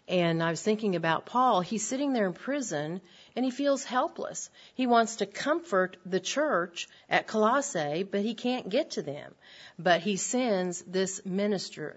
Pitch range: 165-210 Hz